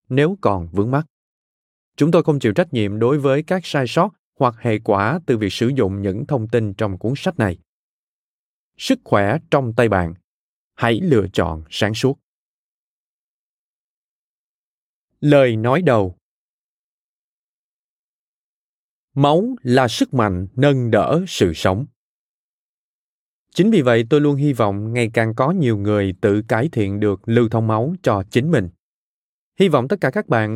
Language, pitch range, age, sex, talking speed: Vietnamese, 105-150 Hz, 20-39, male, 155 wpm